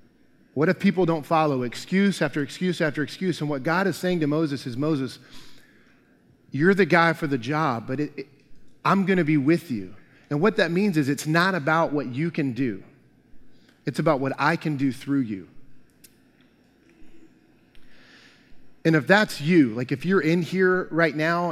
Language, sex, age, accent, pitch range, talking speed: English, male, 30-49, American, 140-170 Hz, 175 wpm